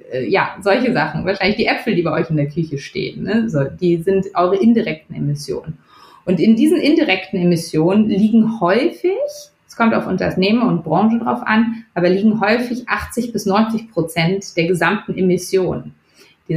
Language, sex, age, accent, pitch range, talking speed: German, female, 30-49, German, 170-220 Hz, 165 wpm